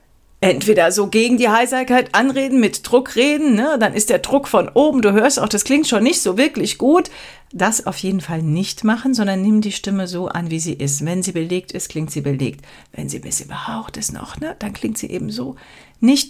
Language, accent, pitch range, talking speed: German, German, 170-240 Hz, 230 wpm